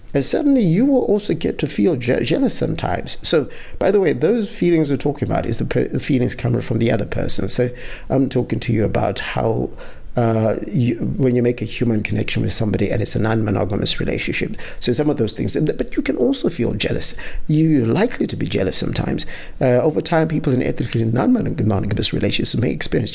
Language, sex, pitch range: English, male, 110-130 Hz